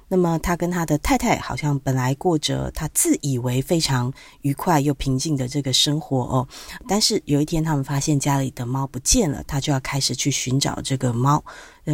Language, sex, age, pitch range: Chinese, female, 30-49, 135-175 Hz